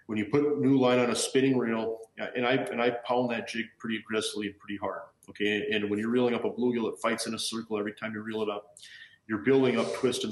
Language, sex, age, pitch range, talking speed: English, male, 40-59, 105-125 Hz, 260 wpm